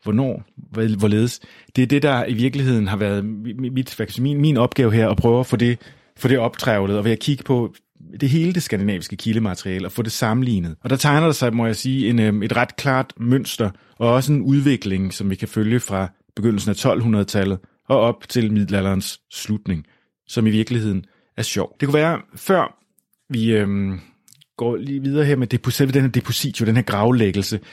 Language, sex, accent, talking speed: Danish, male, native, 195 wpm